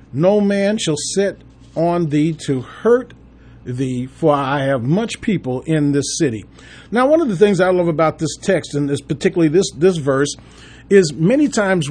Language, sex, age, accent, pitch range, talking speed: English, male, 40-59, American, 145-200 Hz, 180 wpm